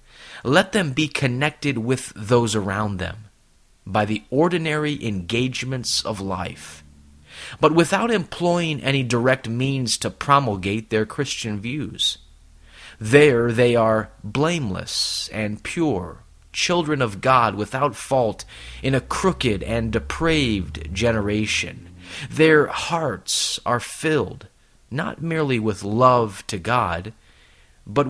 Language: English